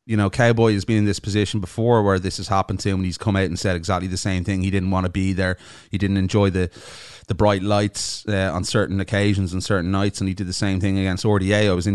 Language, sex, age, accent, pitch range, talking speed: English, male, 30-49, Irish, 90-110 Hz, 280 wpm